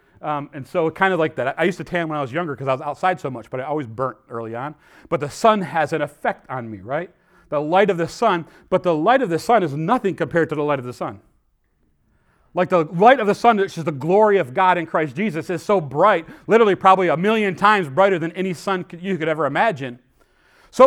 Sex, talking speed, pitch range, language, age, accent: male, 255 wpm, 135-205 Hz, English, 40-59, American